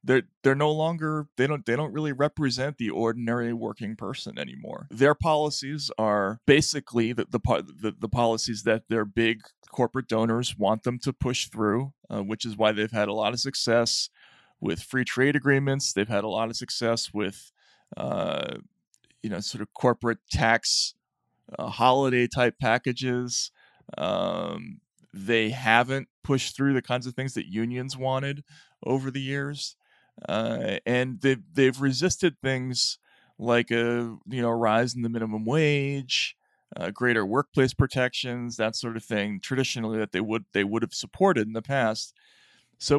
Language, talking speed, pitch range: English, 160 wpm, 110-135 Hz